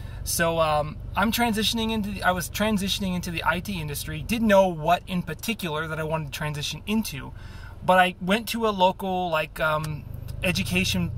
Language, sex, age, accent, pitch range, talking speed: English, male, 20-39, American, 120-185 Hz, 175 wpm